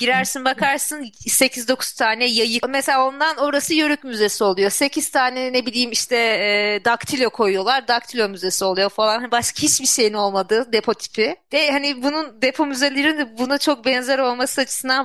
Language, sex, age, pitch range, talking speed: Turkish, female, 30-49, 205-255 Hz, 155 wpm